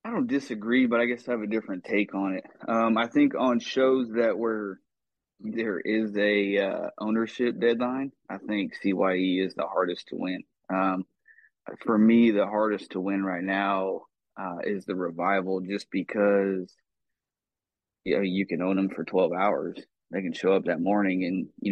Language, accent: English, American